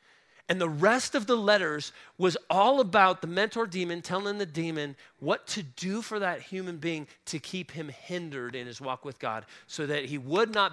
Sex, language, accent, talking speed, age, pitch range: male, English, American, 200 wpm, 40-59, 140-200 Hz